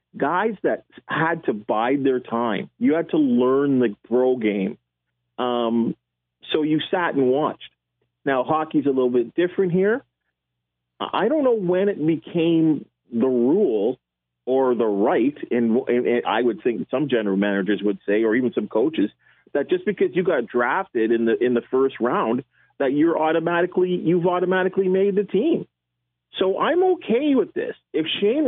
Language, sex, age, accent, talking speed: English, male, 40-59, American, 165 wpm